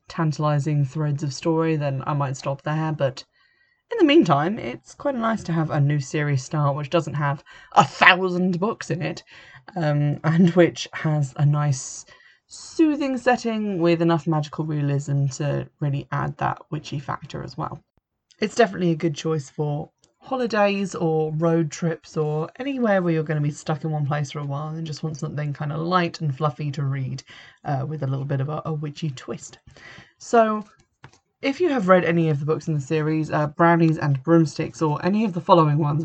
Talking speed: 195 wpm